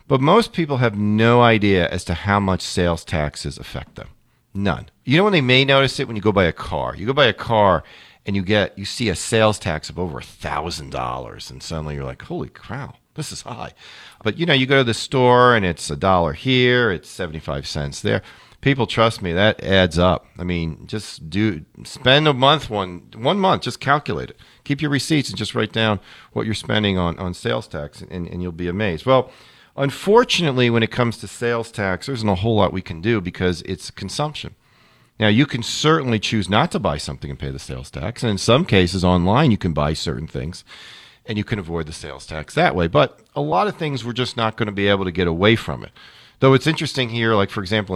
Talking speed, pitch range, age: 235 wpm, 90-125 Hz, 40-59